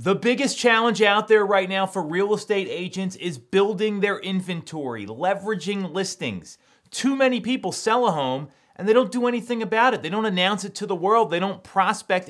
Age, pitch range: 30-49, 165-215 Hz